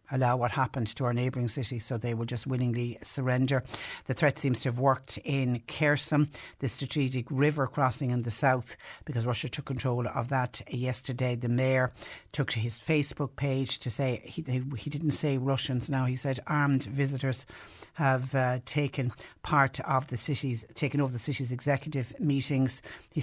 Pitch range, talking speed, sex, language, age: 125-145 Hz, 180 wpm, female, English, 60-79